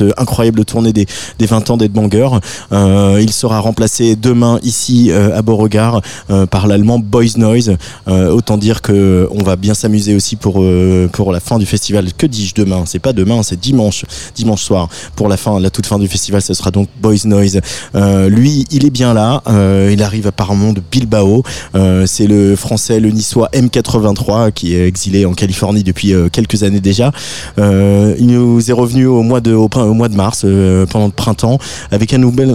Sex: male